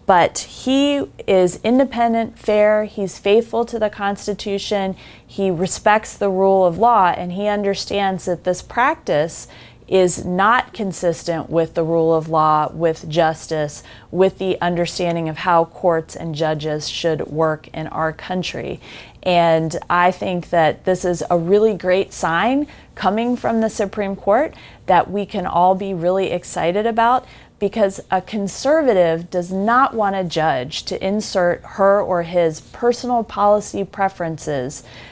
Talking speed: 145 wpm